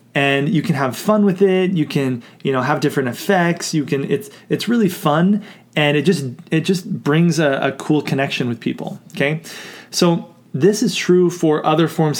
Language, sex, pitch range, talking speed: English, male, 140-175 Hz, 195 wpm